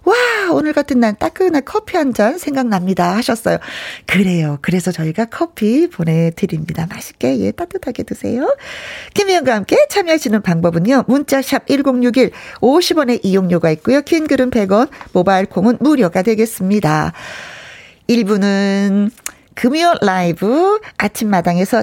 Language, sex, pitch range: Korean, female, 185-285 Hz